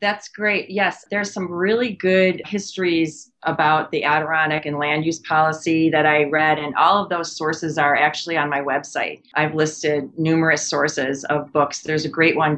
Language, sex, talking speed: English, female, 180 wpm